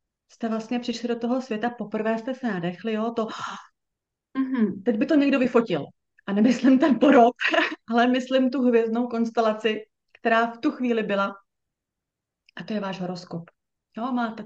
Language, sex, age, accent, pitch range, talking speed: Czech, female, 30-49, native, 210-250 Hz, 165 wpm